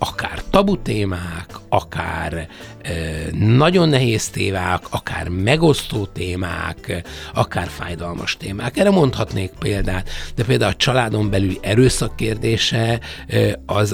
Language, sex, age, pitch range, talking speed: Hungarian, male, 60-79, 90-110 Hz, 105 wpm